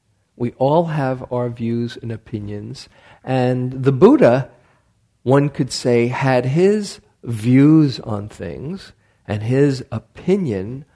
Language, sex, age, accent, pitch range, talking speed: English, male, 50-69, American, 105-140 Hz, 115 wpm